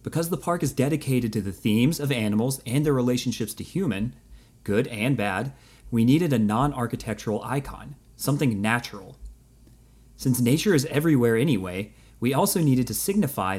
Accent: American